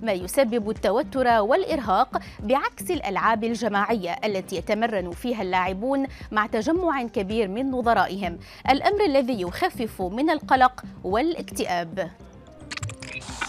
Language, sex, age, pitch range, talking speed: Arabic, female, 20-39, 205-285 Hz, 100 wpm